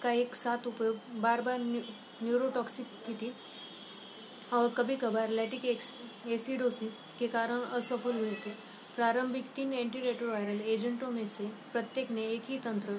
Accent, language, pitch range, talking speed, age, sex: native, Hindi, 220-245 Hz, 45 wpm, 20-39, female